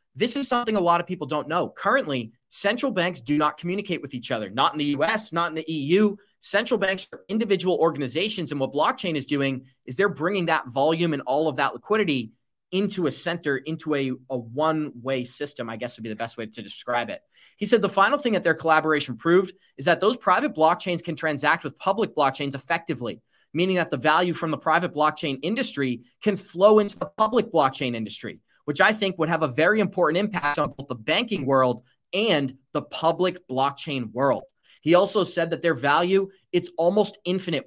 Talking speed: 205 wpm